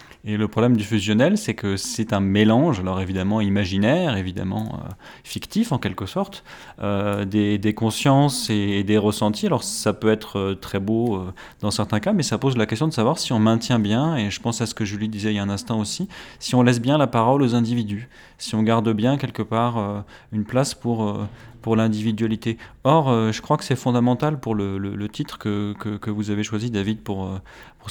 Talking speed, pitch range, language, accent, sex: 215 wpm, 105-120 Hz, French, French, male